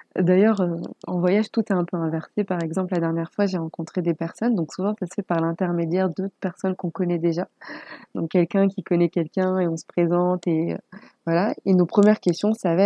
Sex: female